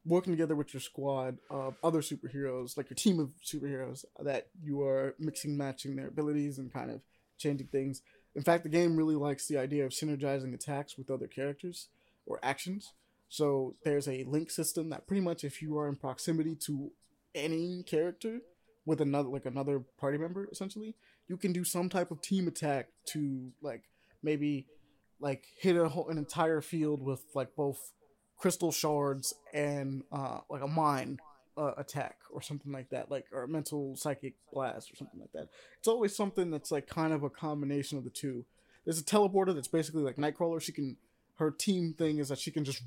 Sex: male